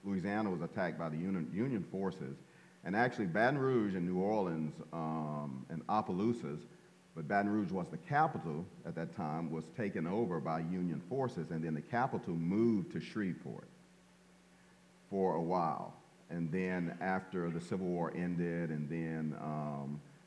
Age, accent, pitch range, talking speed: 40-59, American, 80-100 Hz, 155 wpm